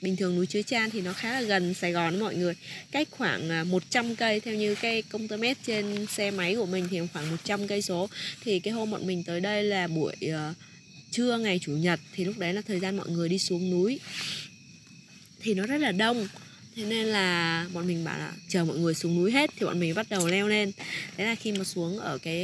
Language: Vietnamese